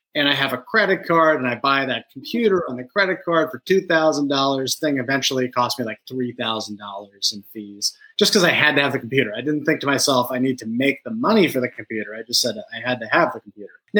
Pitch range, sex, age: 130-170 Hz, male, 30-49